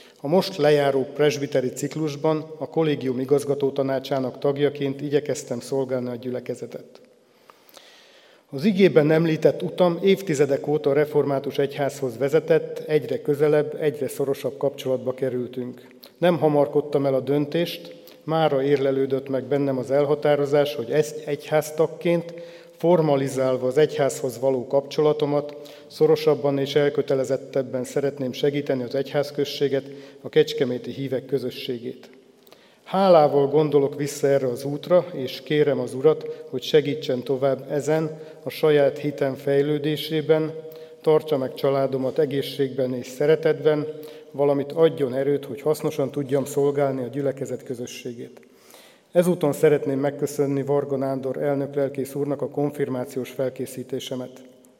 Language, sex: Hungarian, male